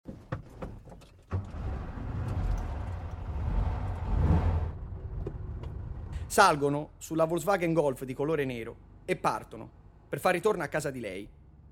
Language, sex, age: Italian, male, 30-49